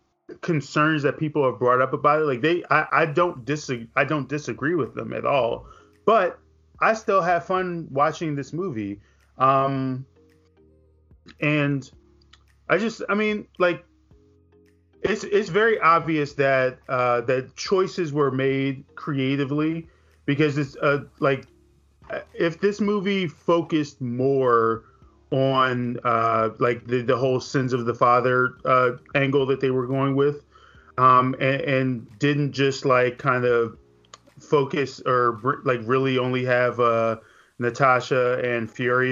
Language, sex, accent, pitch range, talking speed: English, male, American, 120-150 Hz, 140 wpm